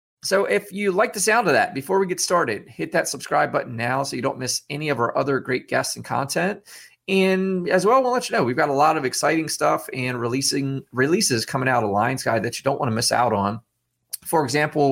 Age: 30-49